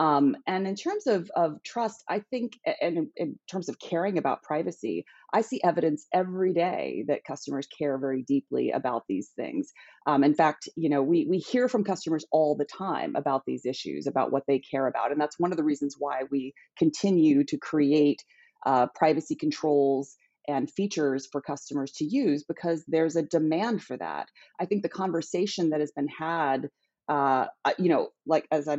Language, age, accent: English, 30-49, American